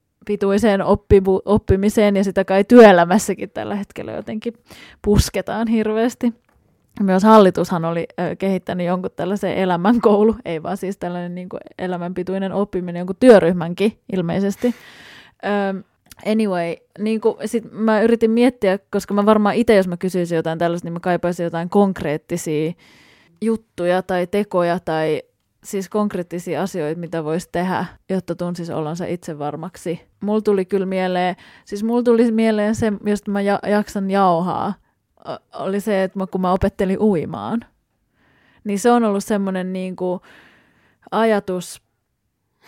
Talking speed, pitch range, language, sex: 135 wpm, 175-215 Hz, Finnish, female